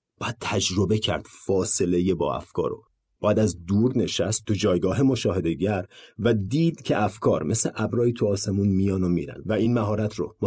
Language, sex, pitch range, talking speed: Persian, male, 100-145 Hz, 170 wpm